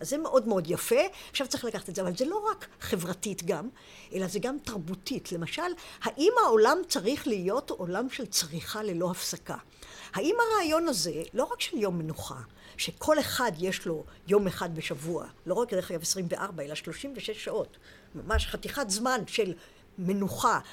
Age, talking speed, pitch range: 60-79, 170 wpm, 190-295 Hz